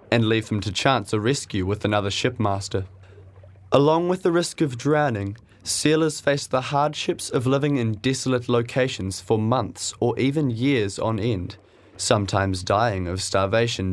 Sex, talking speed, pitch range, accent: male, 155 wpm, 100-145 Hz, Australian